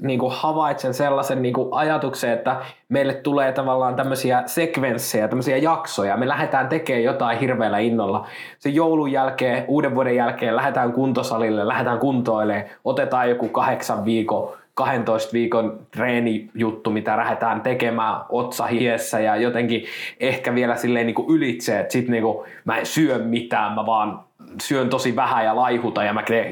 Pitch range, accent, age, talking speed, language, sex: 115-135 Hz, native, 20-39, 145 wpm, Finnish, male